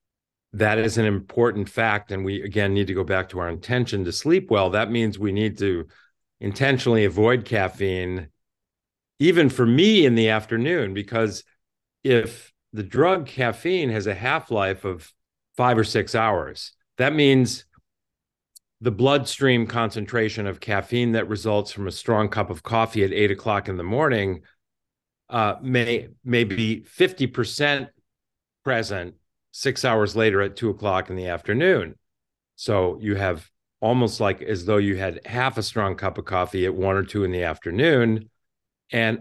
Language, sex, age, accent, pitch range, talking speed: English, male, 50-69, American, 95-120 Hz, 160 wpm